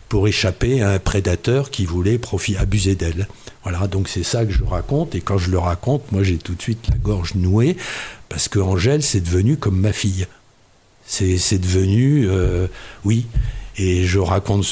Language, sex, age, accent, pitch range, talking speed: French, male, 60-79, French, 95-120 Hz, 185 wpm